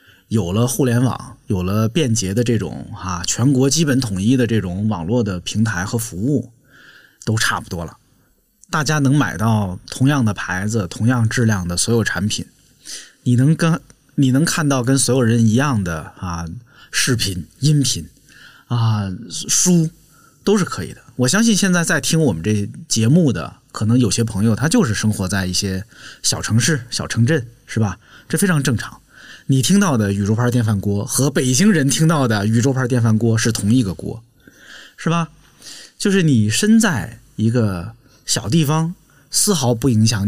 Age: 20-39